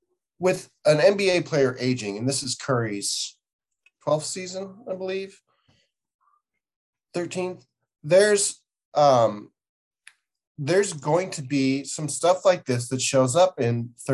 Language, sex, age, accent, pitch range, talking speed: English, male, 30-49, American, 120-160 Hz, 115 wpm